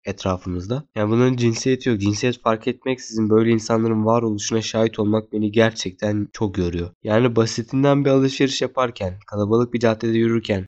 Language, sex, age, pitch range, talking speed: Turkish, male, 20-39, 110-140 Hz, 150 wpm